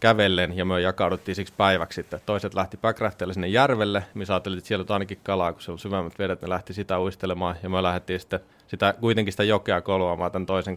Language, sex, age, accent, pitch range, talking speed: Finnish, male, 30-49, native, 90-105 Hz, 215 wpm